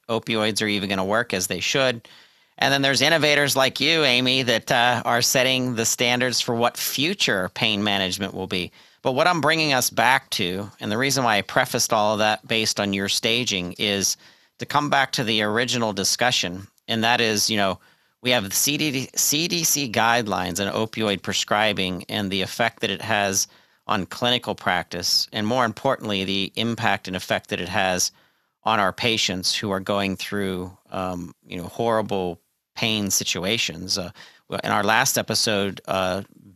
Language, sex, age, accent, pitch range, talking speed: English, male, 40-59, American, 95-125 Hz, 175 wpm